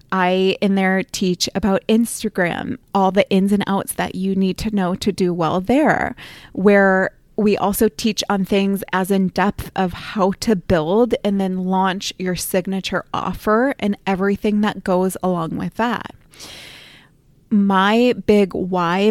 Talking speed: 155 wpm